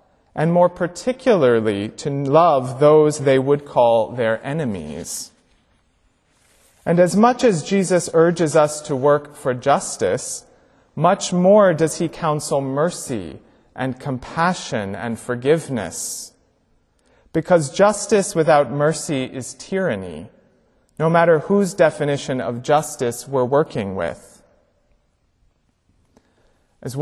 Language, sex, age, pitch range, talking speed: English, male, 30-49, 135-180 Hz, 105 wpm